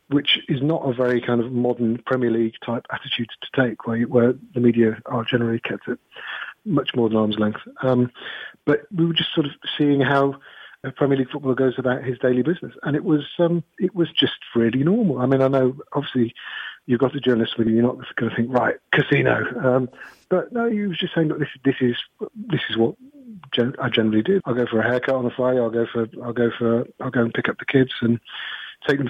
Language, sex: English, male